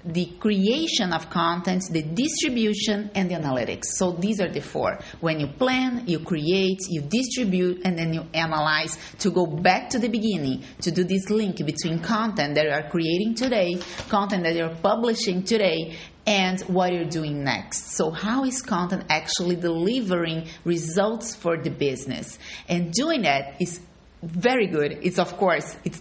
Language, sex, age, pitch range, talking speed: English, female, 30-49, 165-205 Hz, 165 wpm